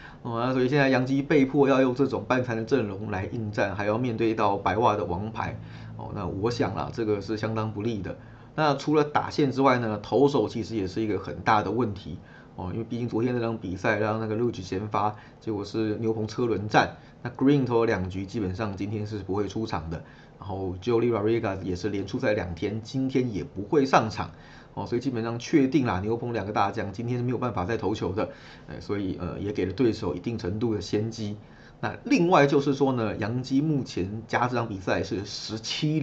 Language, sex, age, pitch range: Chinese, male, 20-39, 105-125 Hz